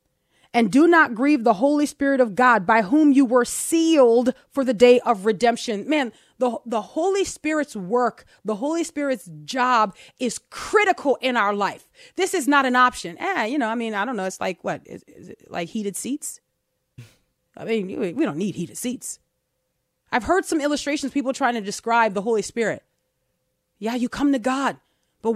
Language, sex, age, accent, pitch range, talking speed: English, female, 30-49, American, 240-350 Hz, 190 wpm